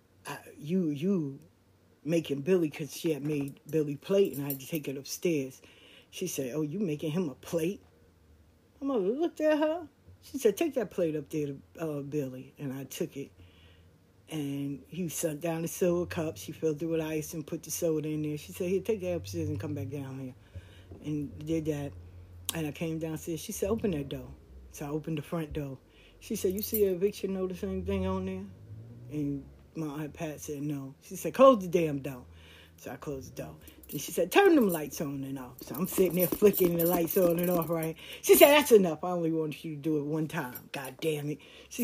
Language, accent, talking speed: English, American, 220 wpm